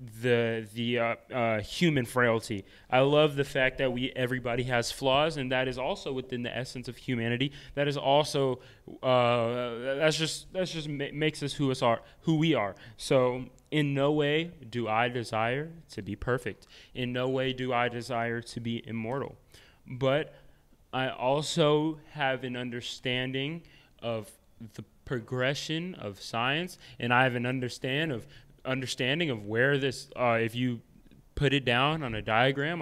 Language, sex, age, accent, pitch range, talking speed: English, male, 20-39, American, 120-160 Hz, 165 wpm